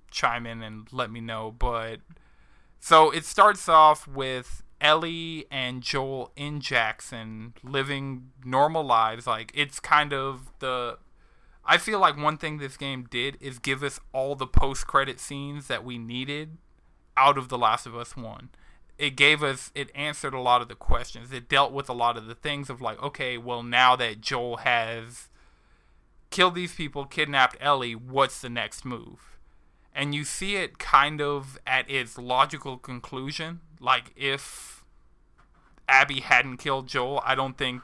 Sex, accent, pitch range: male, American, 120-140 Hz